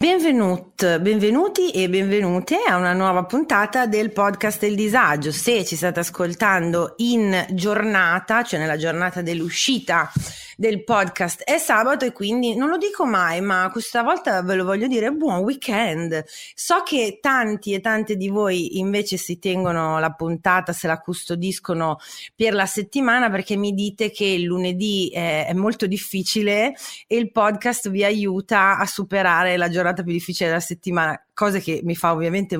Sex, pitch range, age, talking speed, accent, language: female, 175-215 Hz, 30-49, 160 wpm, native, Italian